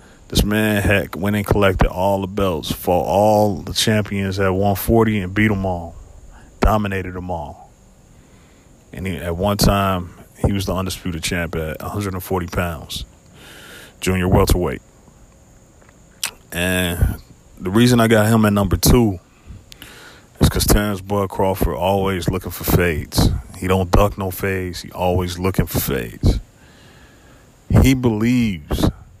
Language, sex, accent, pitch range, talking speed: English, male, American, 90-105 Hz, 135 wpm